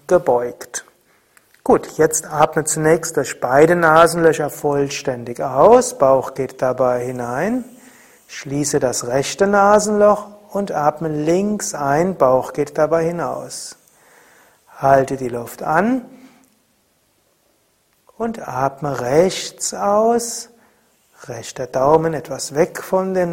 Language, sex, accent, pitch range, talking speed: German, male, German, 135-200 Hz, 105 wpm